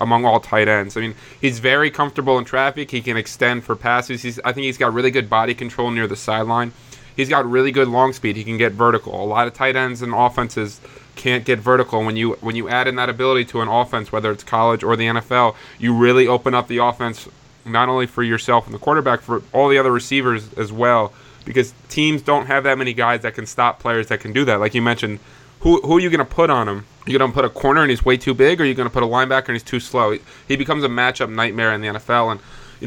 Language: English